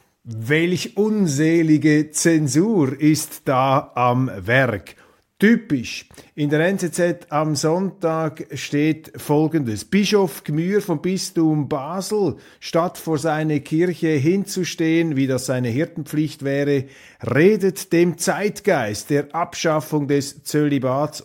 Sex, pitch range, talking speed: male, 135-175 Hz, 105 wpm